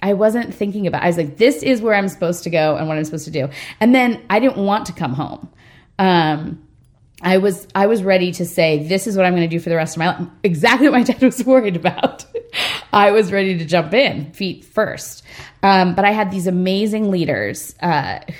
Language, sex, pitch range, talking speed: English, female, 165-205 Hz, 235 wpm